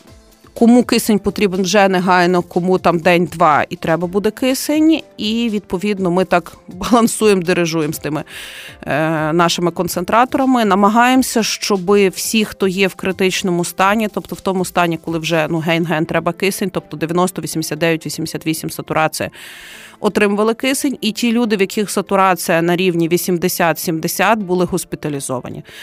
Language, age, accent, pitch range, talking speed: Ukrainian, 30-49, native, 170-210 Hz, 140 wpm